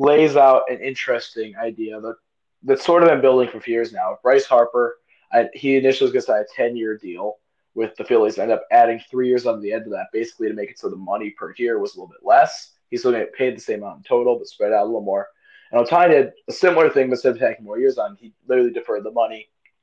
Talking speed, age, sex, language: 270 wpm, 20-39, male, English